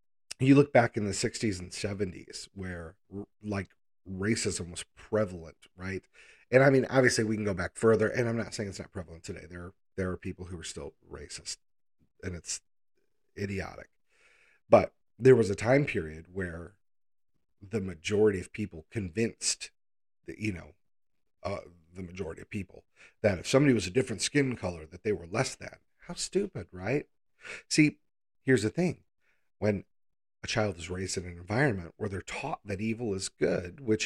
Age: 40-59